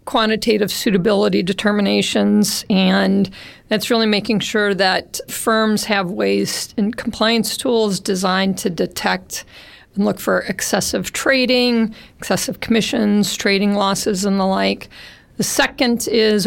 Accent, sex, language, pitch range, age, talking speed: American, female, English, 190-220 Hz, 50-69, 120 wpm